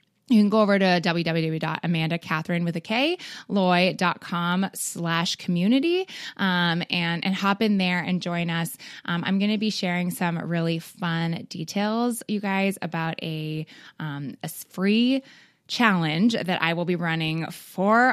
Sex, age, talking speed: female, 20-39, 145 wpm